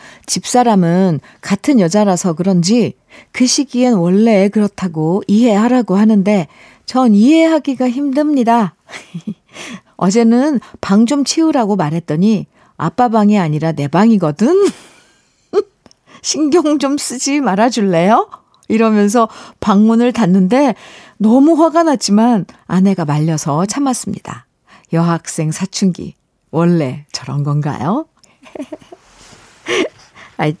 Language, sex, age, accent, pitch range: Korean, female, 50-69, native, 185-260 Hz